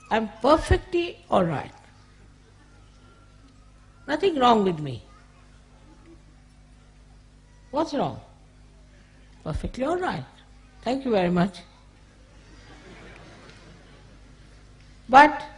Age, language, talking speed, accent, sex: 50-69, English, 70 wpm, Indian, female